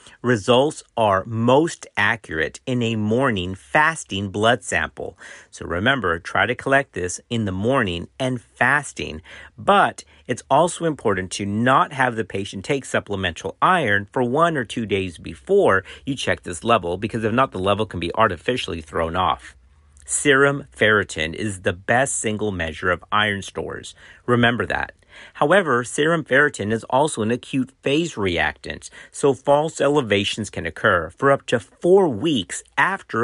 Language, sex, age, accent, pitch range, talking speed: English, male, 50-69, American, 95-135 Hz, 155 wpm